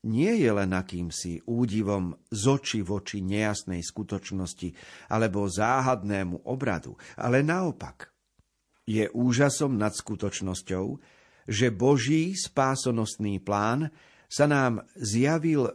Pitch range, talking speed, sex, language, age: 100-135 Hz, 95 wpm, male, Slovak, 50-69